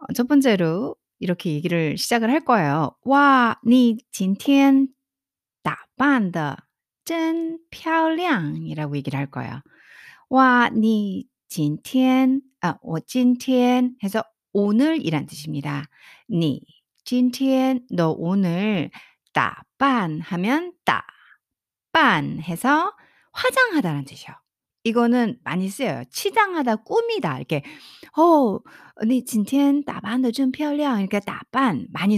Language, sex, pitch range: Korean, female, 165-270 Hz